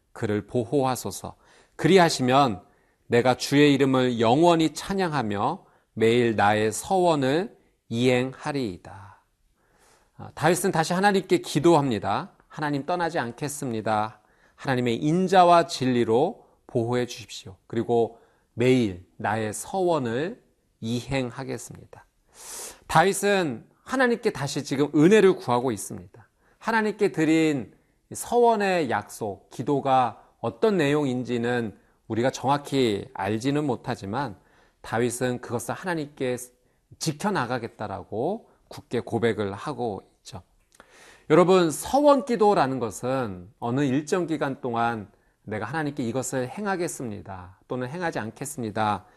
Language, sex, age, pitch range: Korean, male, 40-59, 115-170 Hz